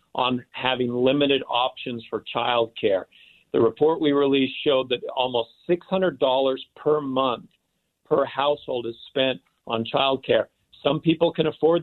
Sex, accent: male, American